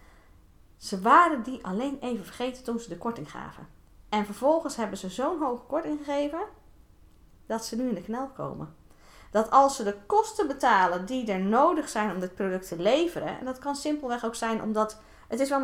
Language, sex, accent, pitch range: Dutch, female, Dutch, 205-280 Hz